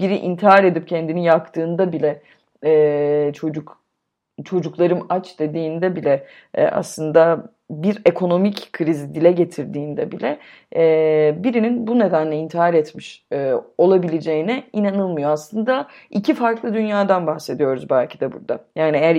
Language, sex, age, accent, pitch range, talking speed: Turkish, female, 30-49, native, 150-210 Hz, 110 wpm